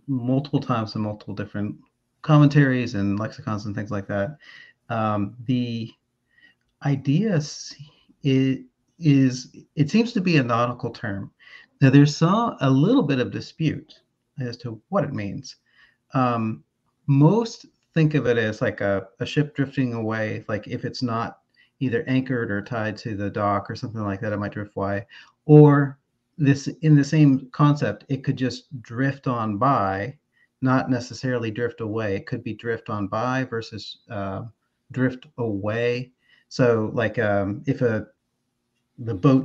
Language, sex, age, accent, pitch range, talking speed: English, male, 30-49, American, 110-140 Hz, 155 wpm